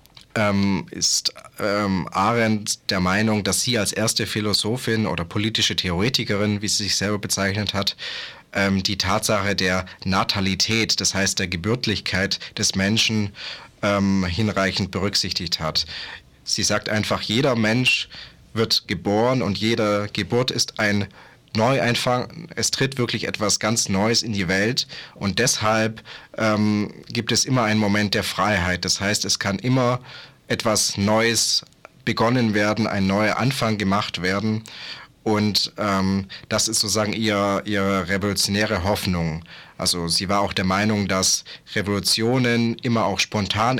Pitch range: 95-110 Hz